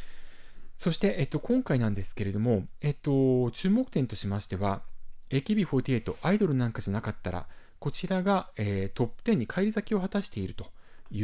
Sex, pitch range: male, 100-170 Hz